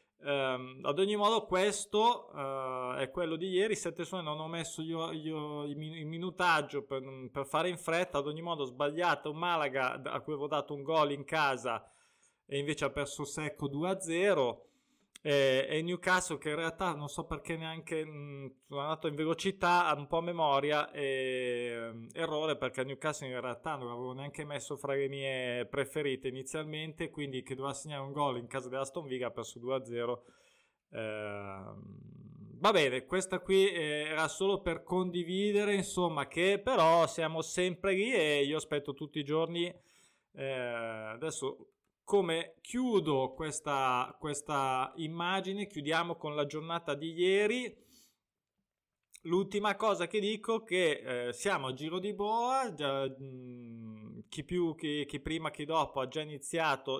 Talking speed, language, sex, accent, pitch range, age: 155 wpm, Italian, male, native, 140-175 Hz, 20-39